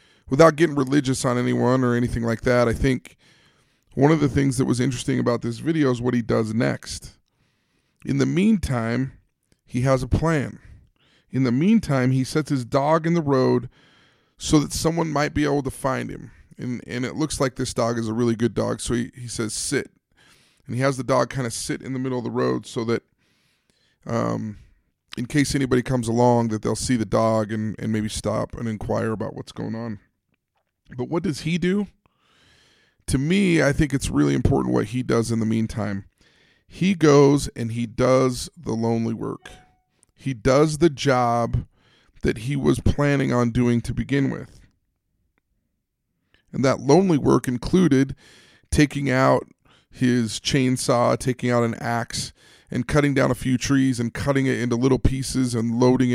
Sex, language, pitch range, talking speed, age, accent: male, English, 115-140 Hz, 185 wpm, 20-39, American